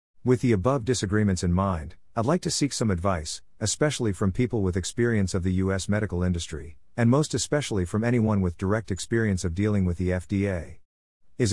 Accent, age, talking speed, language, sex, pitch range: American, 50-69, 185 wpm, English, male, 95-115 Hz